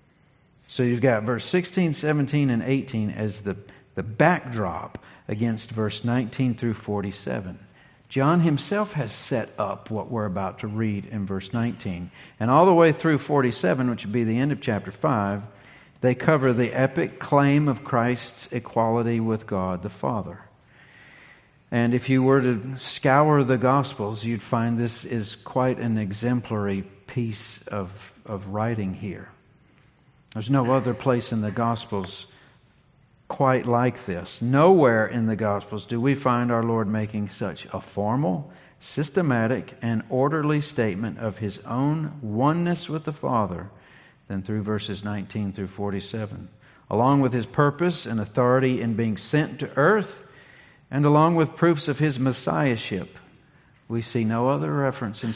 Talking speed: 150 wpm